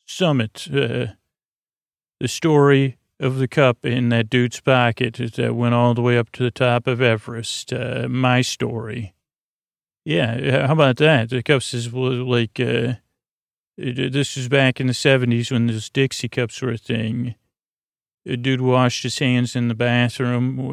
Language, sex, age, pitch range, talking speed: English, male, 40-59, 120-135 Hz, 160 wpm